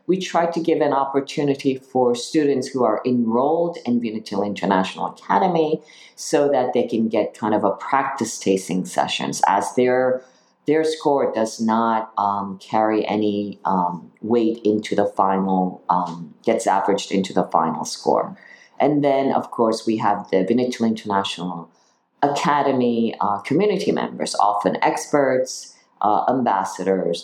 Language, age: English, 50-69